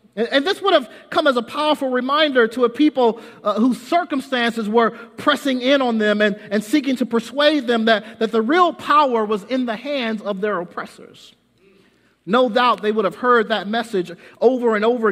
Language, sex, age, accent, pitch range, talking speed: English, male, 50-69, American, 185-255 Hz, 195 wpm